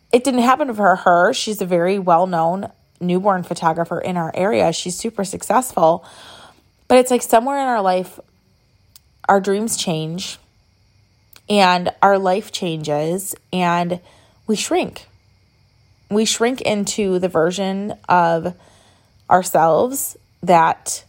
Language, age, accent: English, 20-39, American